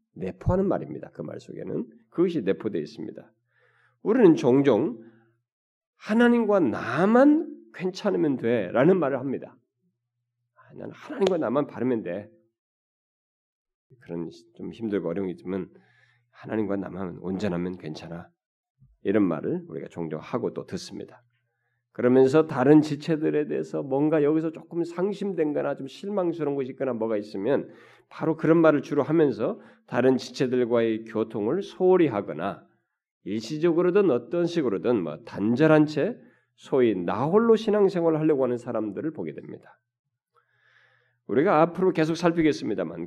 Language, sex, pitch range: Korean, male, 115-170 Hz